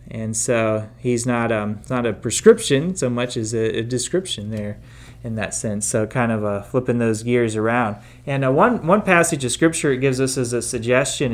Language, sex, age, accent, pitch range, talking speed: English, male, 30-49, American, 120-145 Hz, 205 wpm